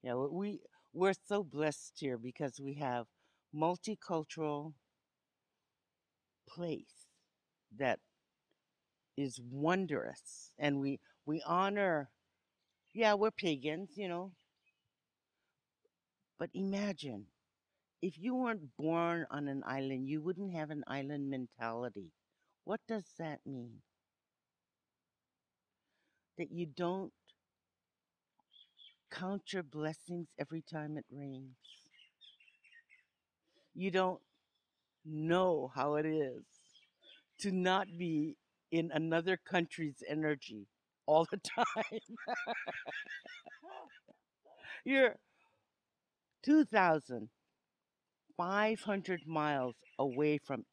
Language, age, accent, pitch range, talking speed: English, 60-79, American, 140-195 Hz, 85 wpm